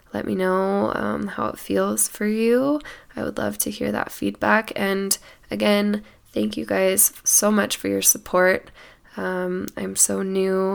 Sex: female